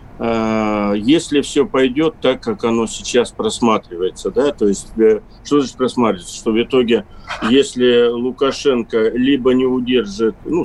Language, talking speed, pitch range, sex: Russian, 130 wpm, 115-140 Hz, male